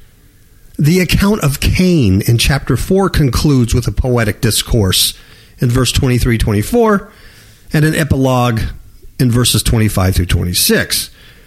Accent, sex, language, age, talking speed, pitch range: American, male, English, 50-69, 110 wpm, 105-150 Hz